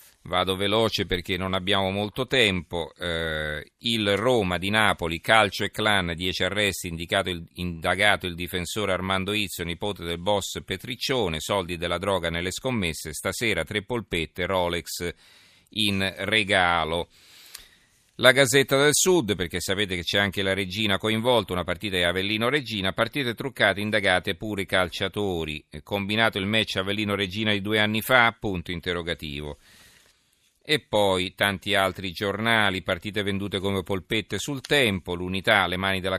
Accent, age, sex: native, 40-59, male